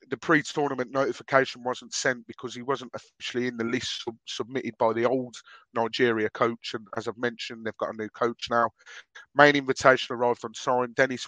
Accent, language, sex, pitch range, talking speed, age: British, English, male, 115-130 Hz, 185 wpm, 30-49